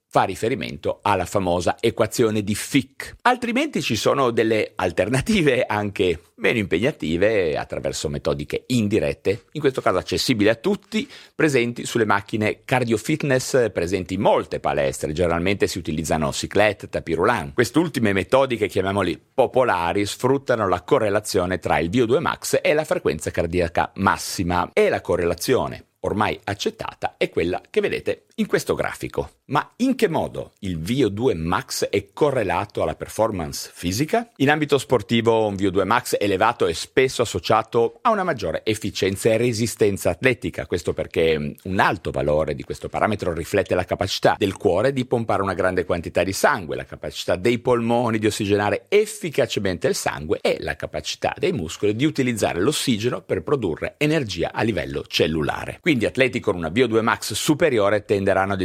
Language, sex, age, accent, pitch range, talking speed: Italian, male, 40-59, native, 105-165 Hz, 145 wpm